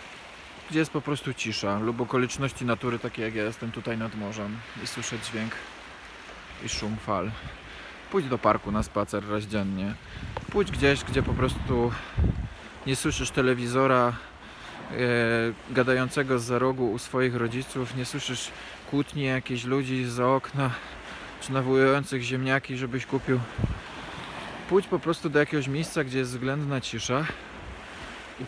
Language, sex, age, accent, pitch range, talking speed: Polish, male, 20-39, native, 115-135 Hz, 140 wpm